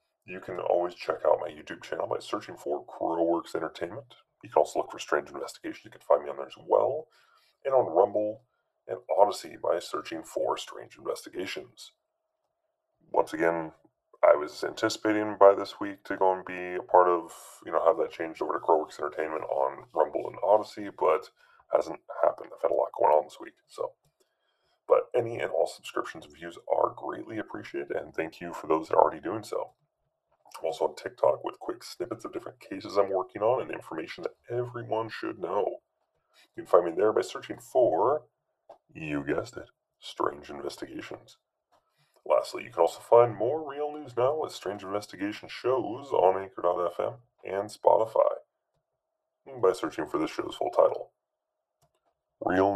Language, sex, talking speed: English, female, 175 wpm